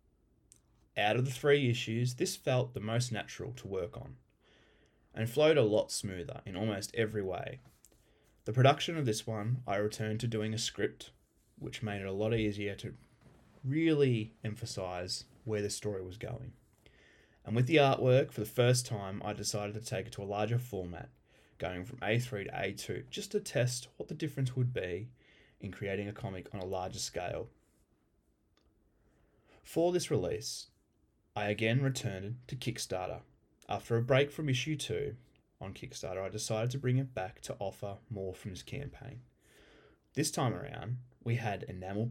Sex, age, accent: male, 20-39, Australian